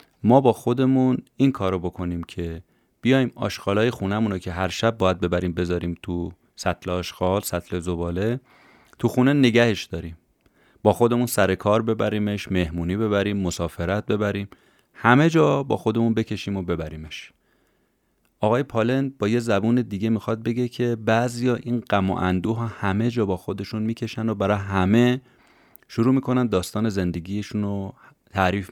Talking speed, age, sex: 150 wpm, 30-49, male